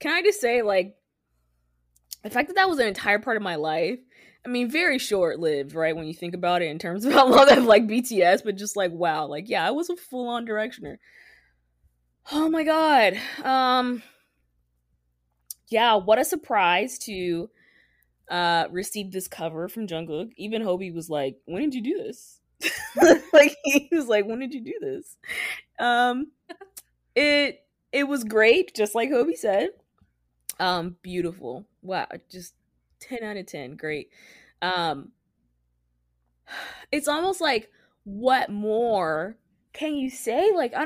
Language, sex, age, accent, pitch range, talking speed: English, female, 20-39, American, 155-245 Hz, 160 wpm